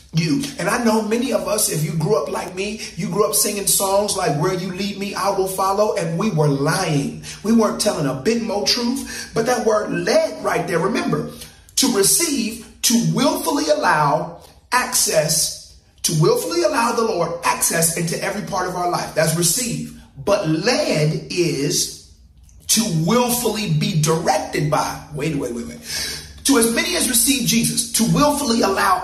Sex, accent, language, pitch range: male, American, English, 155-245 Hz